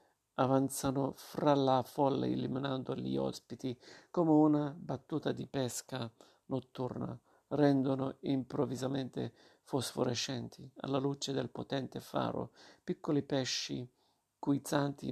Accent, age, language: native, 50-69, Italian